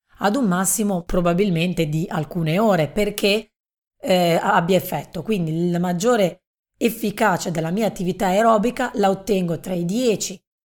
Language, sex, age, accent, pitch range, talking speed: Italian, female, 30-49, native, 170-210 Hz, 135 wpm